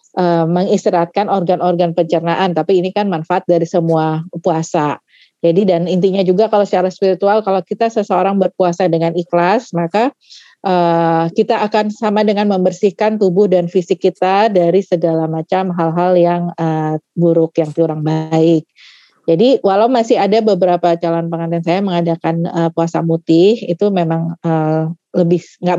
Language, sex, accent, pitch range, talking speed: Indonesian, female, native, 165-190 Hz, 140 wpm